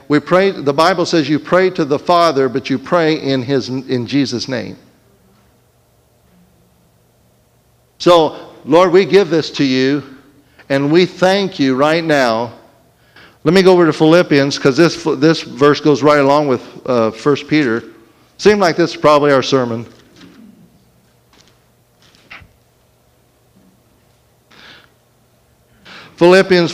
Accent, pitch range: American, 135-170 Hz